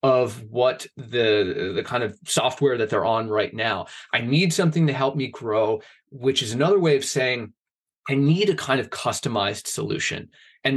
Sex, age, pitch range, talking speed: male, 20-39, 115-145 Hz, 185 wpm